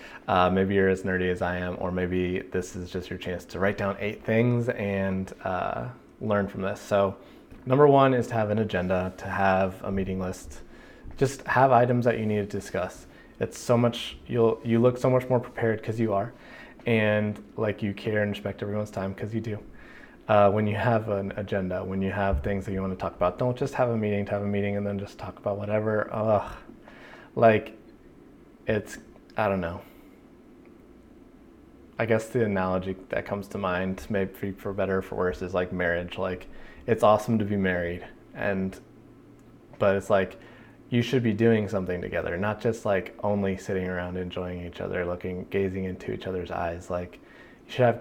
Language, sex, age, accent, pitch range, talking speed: English, male, 20-39, American, 95-110 Hz, 200 wpm